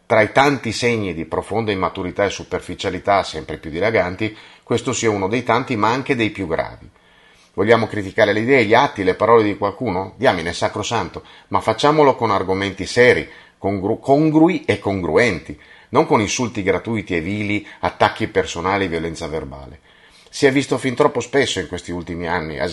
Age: 40-59